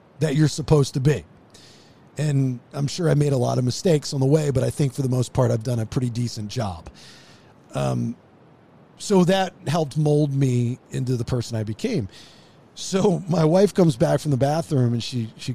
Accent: American